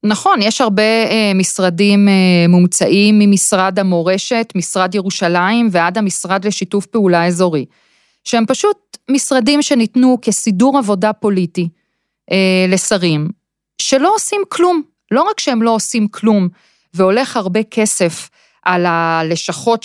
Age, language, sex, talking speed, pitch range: 30-49, Hebrew, female, 110 wpm, 185-255 Hz